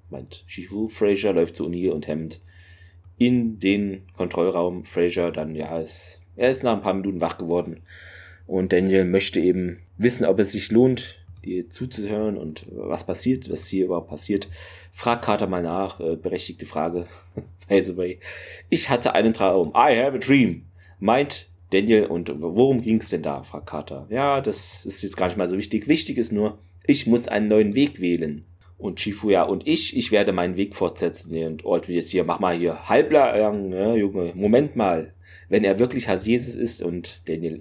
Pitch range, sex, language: 85-105 Hz, male, German